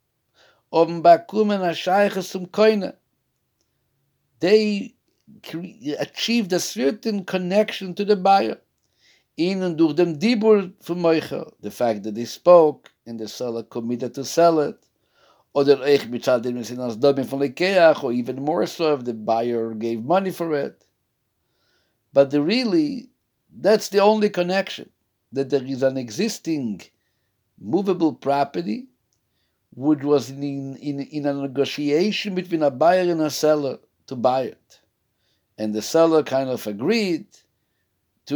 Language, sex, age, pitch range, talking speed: English, male, 60-79, 120-180 Hz, 105 wpm